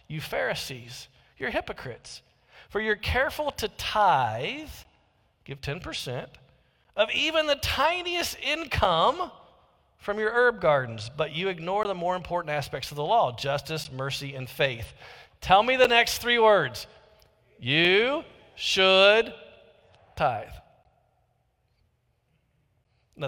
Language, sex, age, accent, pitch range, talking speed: English, male, 40-59, American, 140-225 Hz, 115 wpm